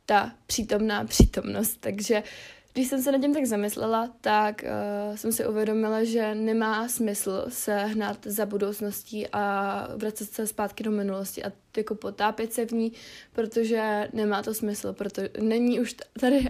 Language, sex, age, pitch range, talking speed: Czech, female, 20-39, 205-230 Hz, 155 wpm